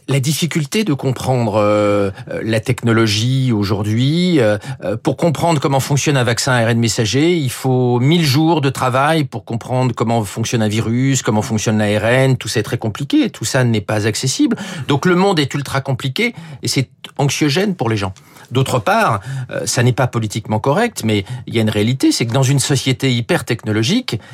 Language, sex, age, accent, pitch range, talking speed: French, male, 40-59, French, 125-170 Hz, 180 wpm